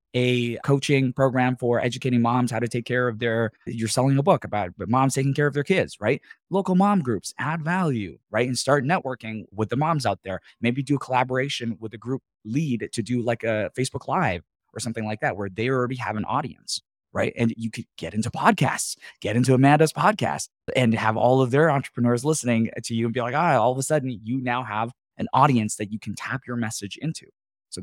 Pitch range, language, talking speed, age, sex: 95-125 Hz, English, 220 wpm, 20-39, male